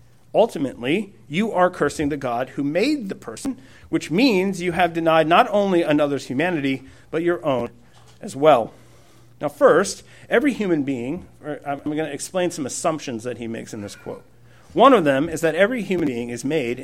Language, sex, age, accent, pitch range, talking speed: English, male, 50-69, American, 135-180 Hz, 180 wpm